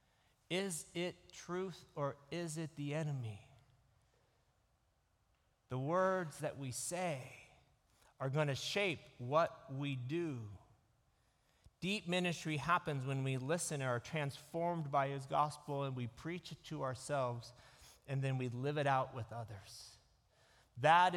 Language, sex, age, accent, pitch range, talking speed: English, male, 40-59, American, 120-155 Hz, 135 wpm